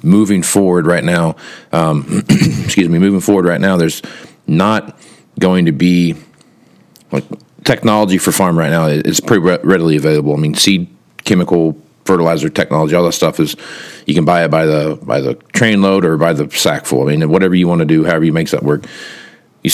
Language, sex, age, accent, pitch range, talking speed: English, male, 40-59, American, 80-90 Hz, 200 wpm